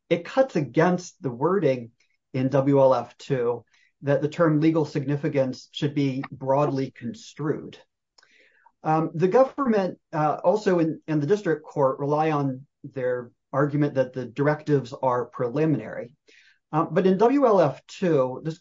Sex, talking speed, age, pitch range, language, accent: male, 130 wpm, 40-59, 135-165 Hz, English, American